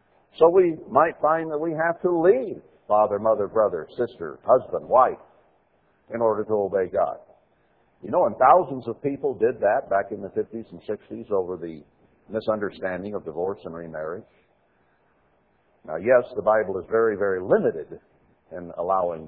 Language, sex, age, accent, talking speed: English, male, 60-79, American, 160 wpm